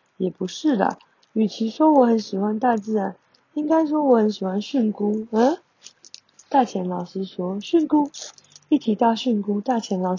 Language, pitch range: Chinese, 215-275 Hz